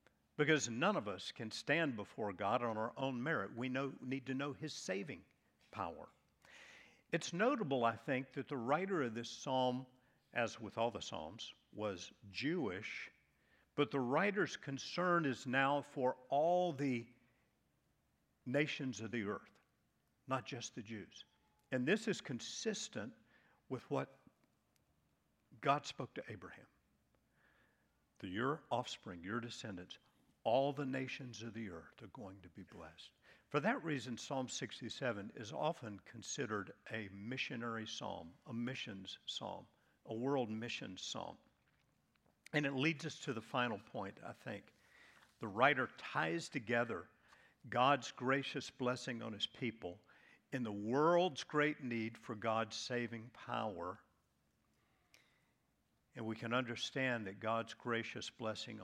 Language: English